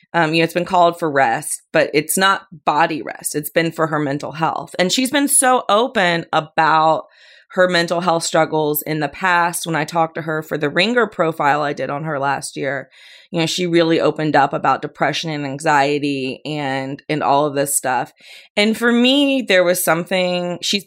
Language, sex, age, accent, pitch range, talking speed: English, female, 30-49, American, 155-200 Hz, 200 wpm